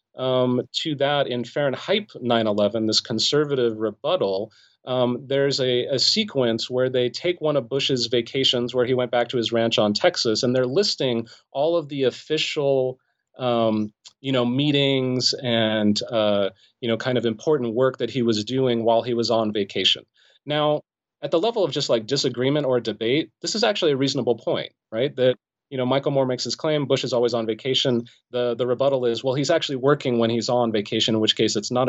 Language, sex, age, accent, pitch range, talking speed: English, male, 30-49, American, 120-145 Hz, 200 wpm